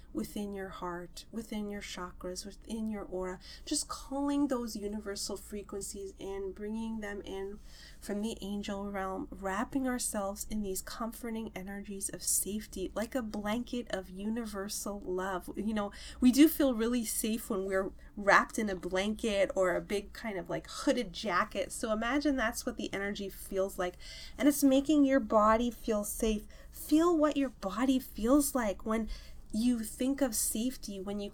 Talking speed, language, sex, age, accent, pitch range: 165 wpm, English, female, 20-39, American, 195-240 Hz